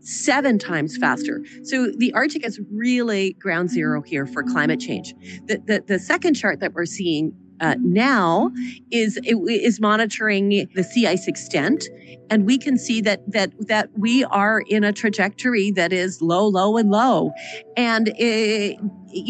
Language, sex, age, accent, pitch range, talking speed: English, female, 40-59, American, 175-230 Hz, 160 wpm